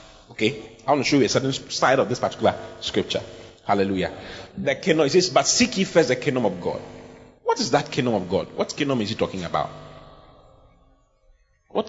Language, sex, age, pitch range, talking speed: English, male, 30-49, 105-180 Hz, 190 wpm